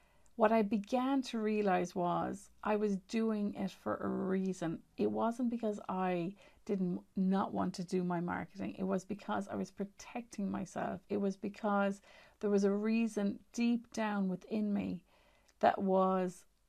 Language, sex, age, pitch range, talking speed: English, female, 40-59, 195-230 Hz, 160 wpm